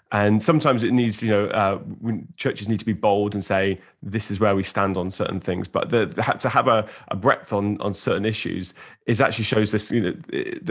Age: 20-39